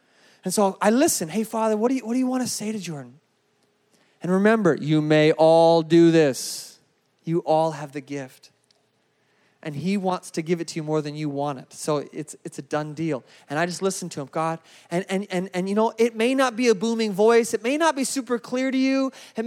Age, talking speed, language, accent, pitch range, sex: 30-49, 235 wpm, English, American, 175-240 Hz, male